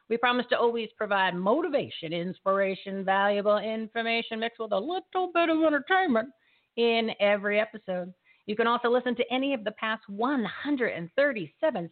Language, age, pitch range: English, 50-69, 200-255 Hz